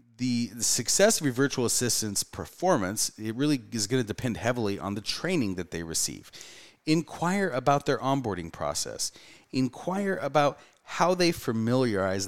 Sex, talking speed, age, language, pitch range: male, 145 wpm, 30-49, English, 95-145 Hz